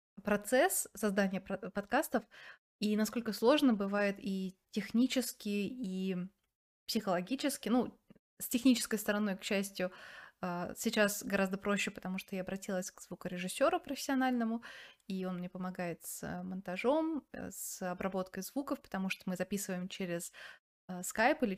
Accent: native